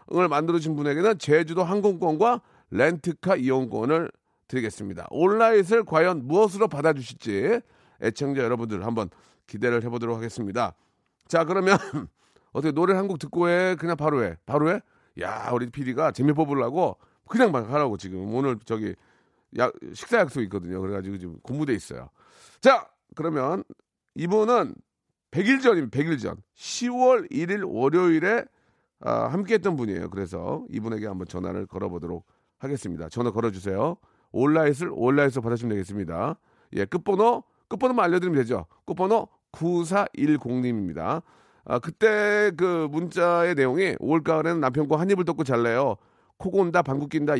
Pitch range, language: 115-180 Hz, Korean